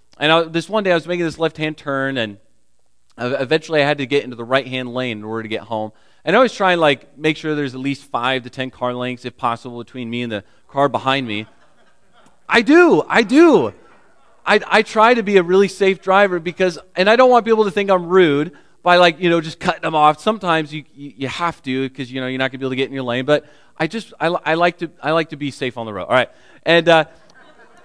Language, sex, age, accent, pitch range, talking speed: English, male, 30-49, American, 130-170 Hz, 260 wpm